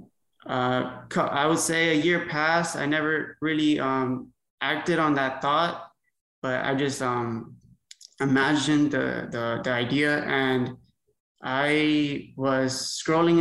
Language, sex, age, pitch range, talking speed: English, male, 20-39, 125-150 Hz, 125 wpm